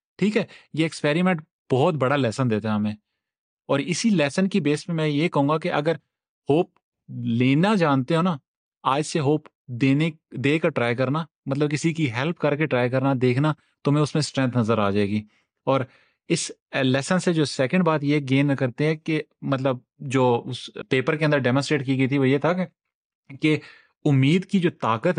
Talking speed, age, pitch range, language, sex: 195 wpm, 30-49, 120-155 Hz, Urdu, male